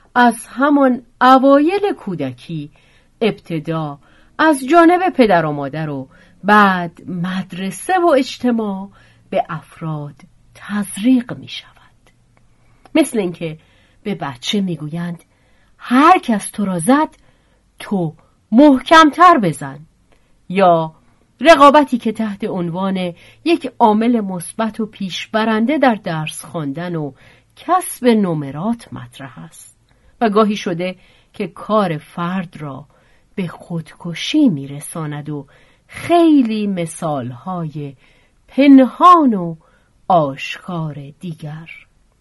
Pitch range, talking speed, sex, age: 160-245 Hz, 95 wpm, female, 40-59